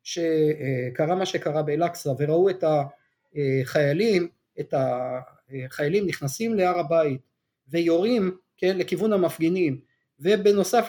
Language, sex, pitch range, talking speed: Hebrew, male, 150-195 Hz, 95 wpm